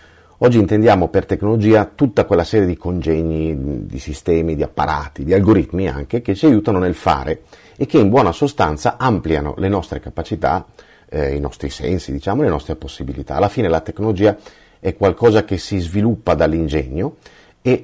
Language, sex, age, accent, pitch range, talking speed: Italian, male, 40-59, native, 80-105 Hz, 165 wpm